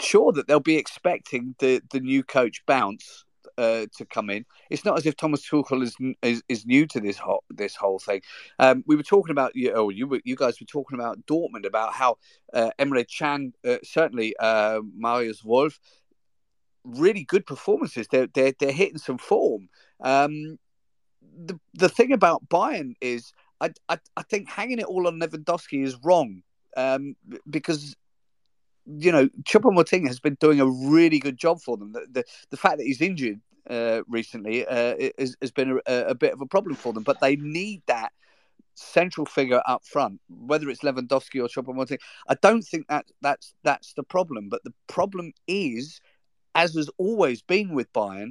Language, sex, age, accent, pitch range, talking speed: English, male, 40-59, British, 130-175 Hz, 185 wpm